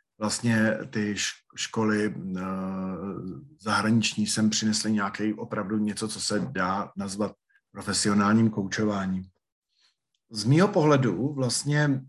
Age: 50-69